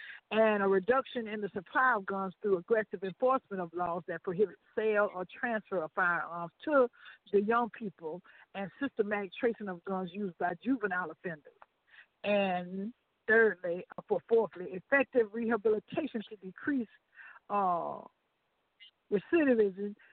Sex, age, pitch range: female, 60-79, 190-245 Hz